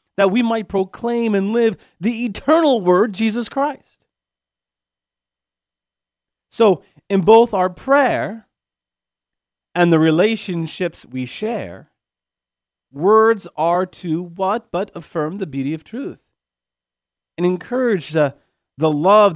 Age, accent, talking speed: 40-59, American, 110 wpm